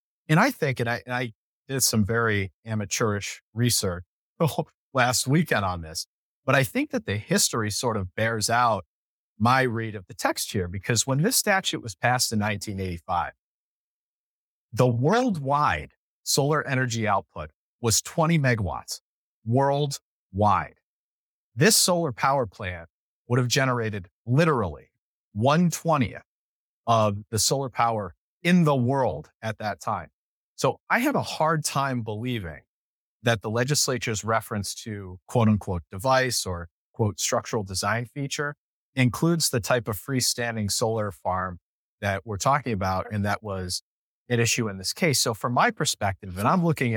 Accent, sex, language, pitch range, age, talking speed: American, male, English, 100-135 Hz, 40-59, 145 wpm